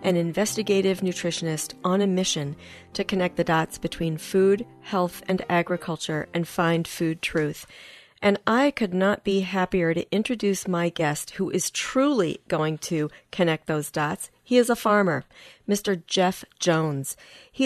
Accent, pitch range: American, 165-195 Hz